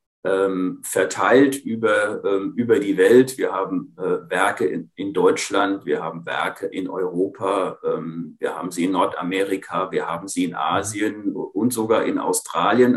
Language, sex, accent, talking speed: German, male, German, 135 wpm